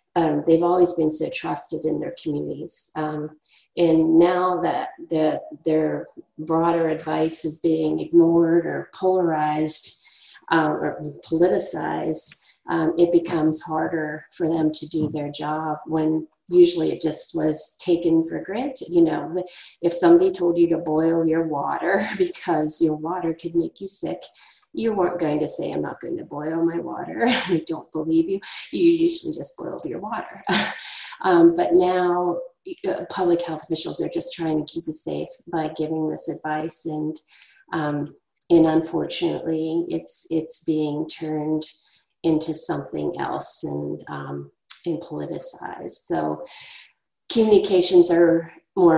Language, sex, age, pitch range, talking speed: English, female, 40-59, 155-175 Hz, 145 wpm